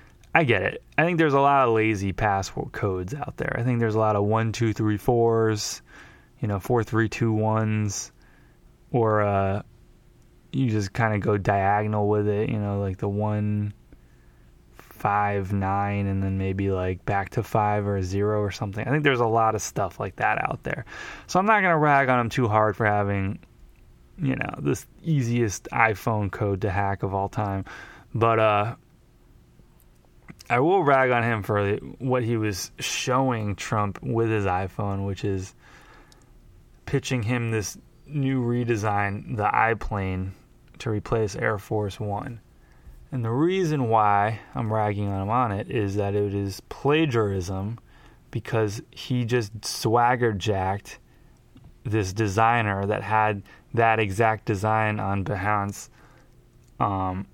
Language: English